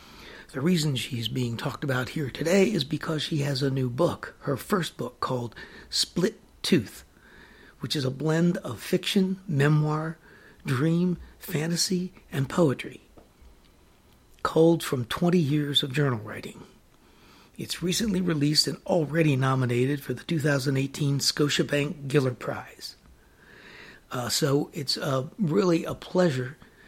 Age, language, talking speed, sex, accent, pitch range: 60-79, English, 130 wpm, male, American, 135-165 Hz